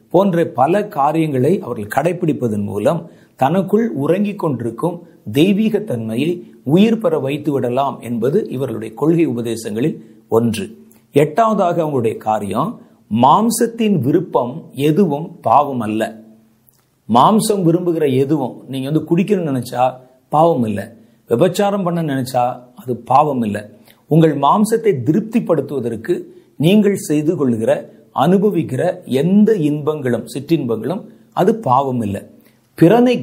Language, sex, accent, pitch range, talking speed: Tamil, male, native, 125-200 Hz, 100 wpm